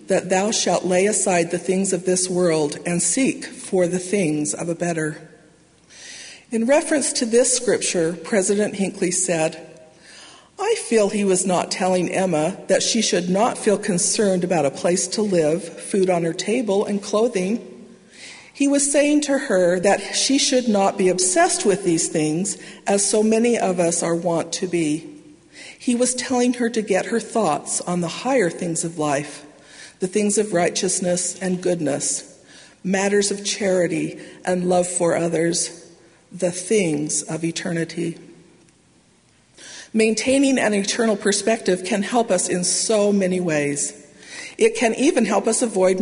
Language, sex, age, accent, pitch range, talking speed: English, female, 50-69, American, 170-220 Hz, 160 wpm